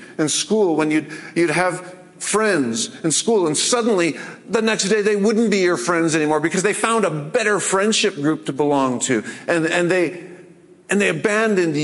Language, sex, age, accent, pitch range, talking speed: English, male, 50-69, American, 150-200 Hz, 180 wpm